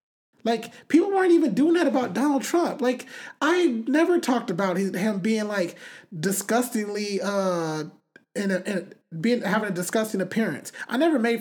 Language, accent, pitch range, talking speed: English, American, 200-265 Hz, 155 wpm